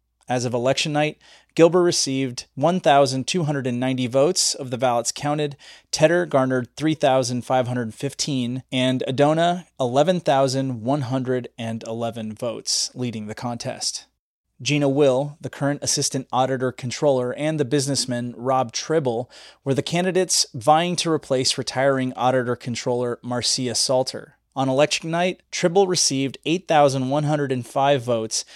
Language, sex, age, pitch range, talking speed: English, male, 30-49, 125-145 Hz, 105 wpm